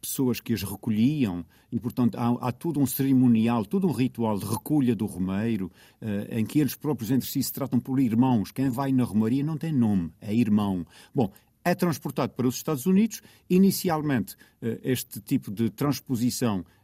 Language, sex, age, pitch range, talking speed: Portuguese, male, 50-69, 105-140 Hz, 180 wpm